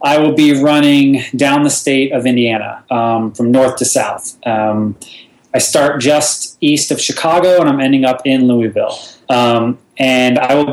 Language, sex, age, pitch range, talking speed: English, male, 30-49, 120-145 Hz, 175 wpm